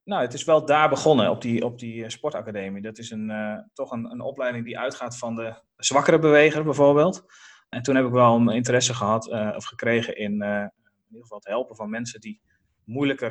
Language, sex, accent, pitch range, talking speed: Dutch, male, Dutch, 110-135 Hz, 215 wpm